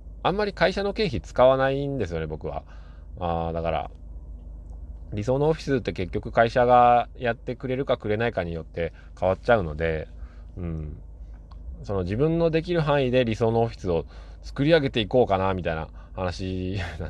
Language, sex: Japanese, male